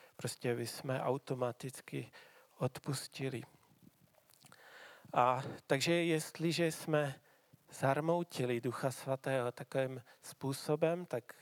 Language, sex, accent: Czech, male, native